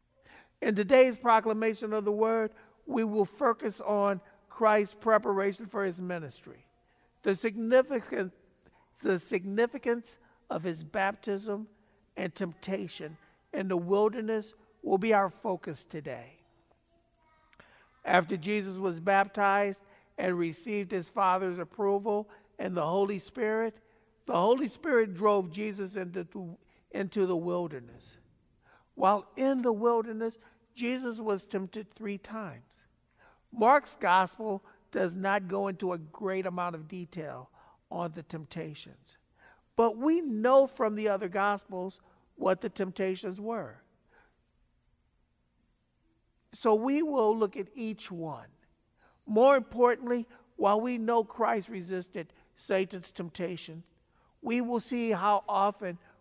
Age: 60-79